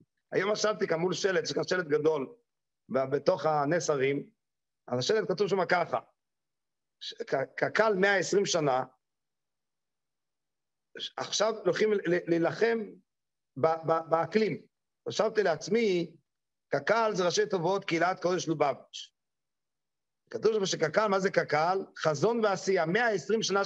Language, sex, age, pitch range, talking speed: English, male, 50-69, 175-230 Hz, 105 wpm